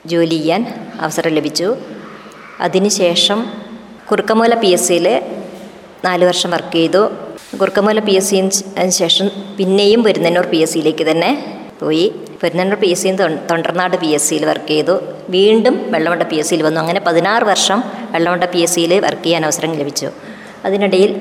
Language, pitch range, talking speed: Malayalam, 170-200 Hz, 130 wpm